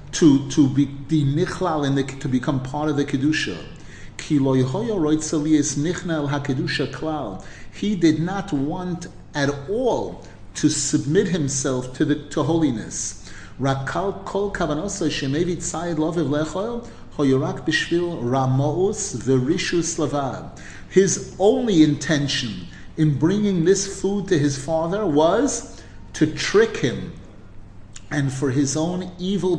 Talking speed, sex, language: 85 wpm, male, English